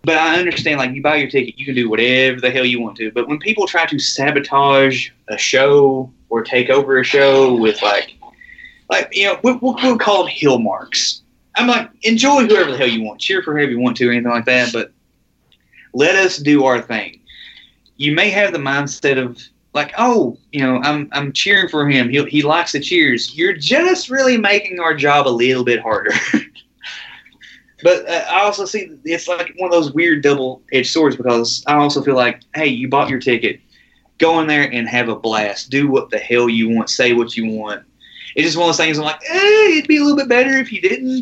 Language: English